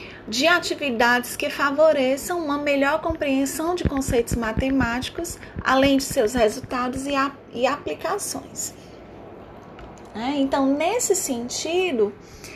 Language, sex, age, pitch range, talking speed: Portuguese, female, 10-29, 230-285 Hz, 95 wpm